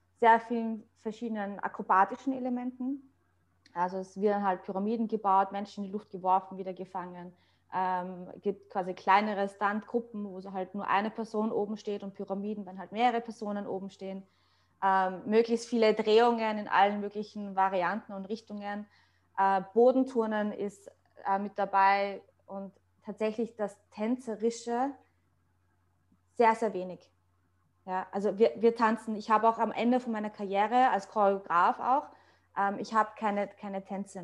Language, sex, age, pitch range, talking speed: German, female, 20-39, 185-215 Hz, 150 wpm